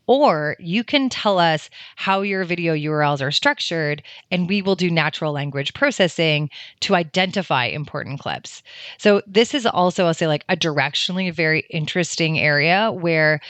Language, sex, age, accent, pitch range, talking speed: English, female, 30-49, American, 150-185 Hz, 155 wpm